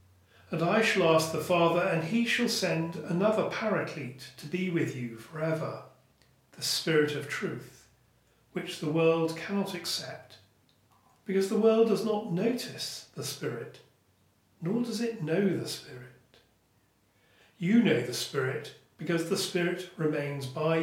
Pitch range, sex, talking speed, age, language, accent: 130-185 Hz, male, 140 wpm, 40-59, English, British